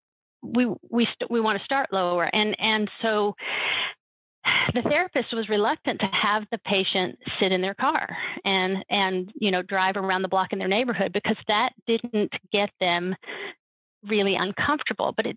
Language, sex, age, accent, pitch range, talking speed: English, female, 40-59, American, 190-225 Hz, 165 wpm